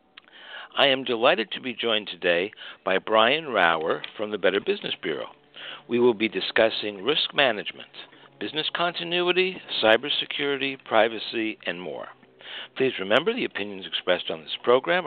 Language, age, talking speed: English, 60-79, 140 wpm